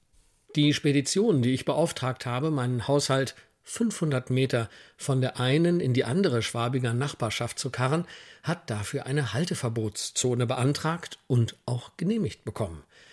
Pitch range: 120-150 Hz